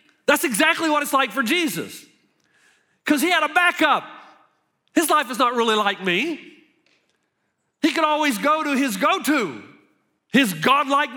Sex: male